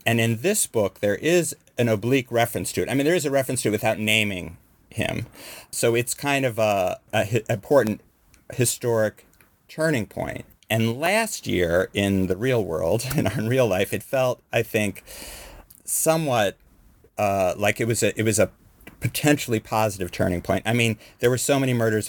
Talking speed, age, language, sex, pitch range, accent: 185 wpm, 50-69, English, male, 95-125 Hz, American